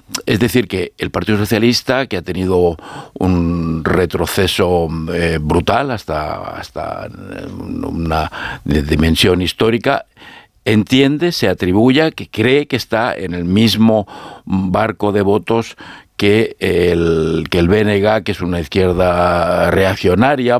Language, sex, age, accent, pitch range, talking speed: Spanish, male, 60-79, Spanish, 90-120 Hz, 115 wpm